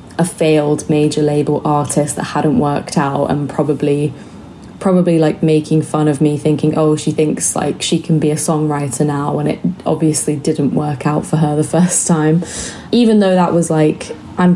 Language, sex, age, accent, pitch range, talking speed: English, female, 20-39, British, 150-170 Hz, 185 wpm